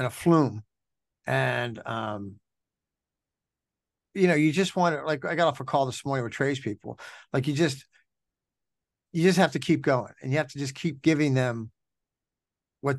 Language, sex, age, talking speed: English, male, 50-69, 180 wpm